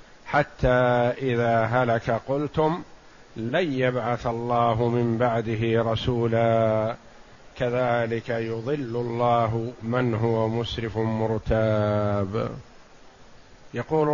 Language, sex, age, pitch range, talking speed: Arabic, male, 50-69, 115-135 Hz, 75 wpm